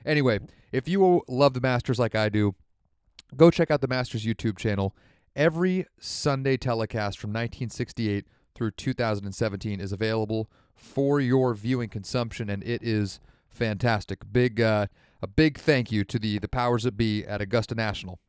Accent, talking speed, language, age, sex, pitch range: American, 160 wpm, English, 30-49, male, 105-140 Hz